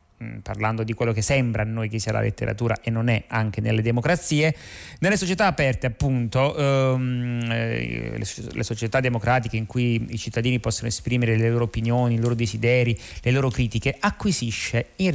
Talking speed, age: 170 wpm, 30-49